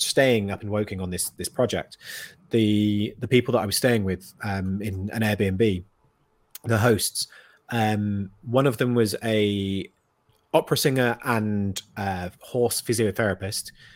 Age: 30-49